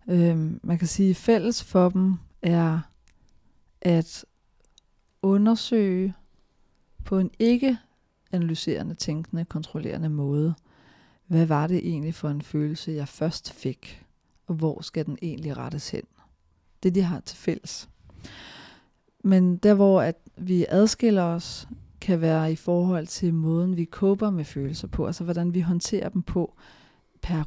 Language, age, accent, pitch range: Danish, 40-59, native, 155-195 Hz